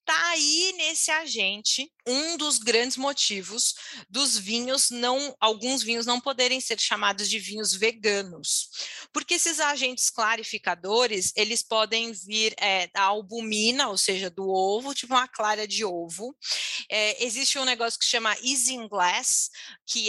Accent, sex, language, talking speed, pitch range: Brazilian, female, Portuguese, 145 wpm, 210-270 Hz